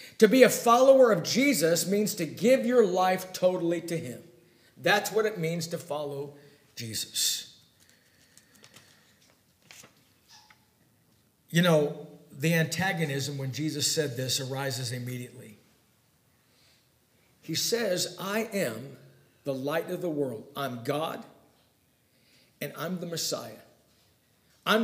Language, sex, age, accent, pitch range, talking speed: English, male, 50-69, American, 150-225 Hz, 115 wpm